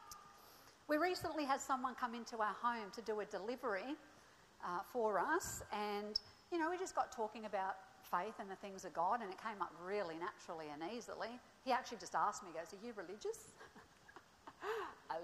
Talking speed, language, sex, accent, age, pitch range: 190 wpm, English, female, Australian, 50-69, 195-300 Hz